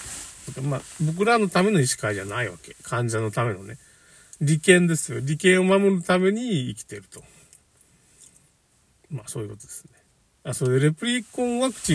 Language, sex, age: Japanese, male, 50-69